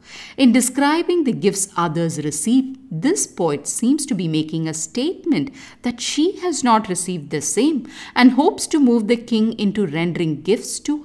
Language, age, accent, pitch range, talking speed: English, 50-69, Indian, 160-250 Hz, 170 wpm